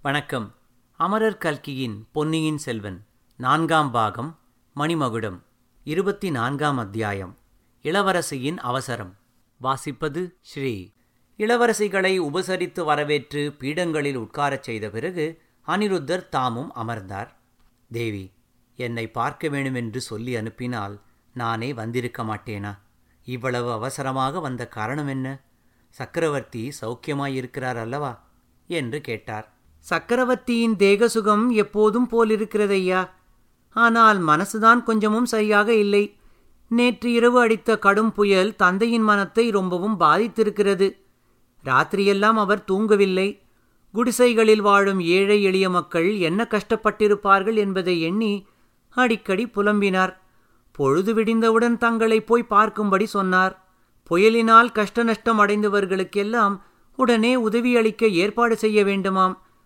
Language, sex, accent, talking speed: Tamil, male, native, 90 wpm